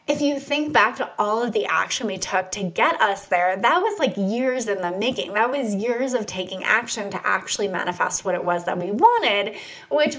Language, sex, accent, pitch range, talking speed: English, female, American, 185-260 Hz, 225 wpm